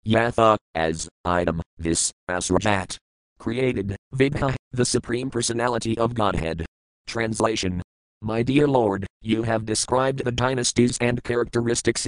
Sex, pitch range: male, 100-120 Hz